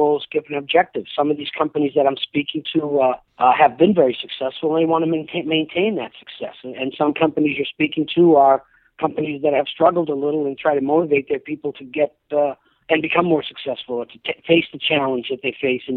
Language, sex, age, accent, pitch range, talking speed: English, male, 50-69, American, 130-160 Hz, 235 wpm